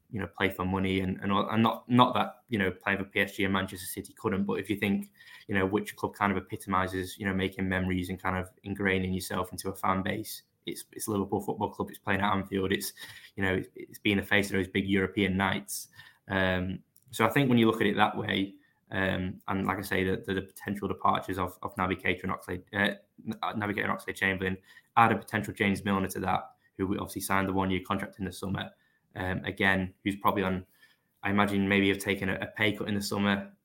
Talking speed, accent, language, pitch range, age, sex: 235 wpm, British, English, 95-100 Hz, 10-29, male